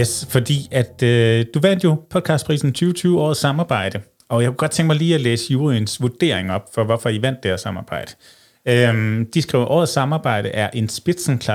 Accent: native